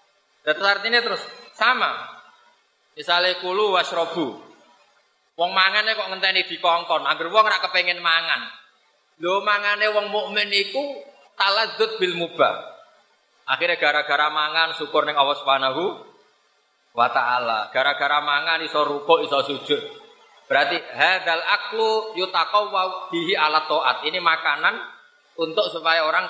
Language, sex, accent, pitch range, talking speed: Indonesian, male, native, 150-220 Hz, 120 wpm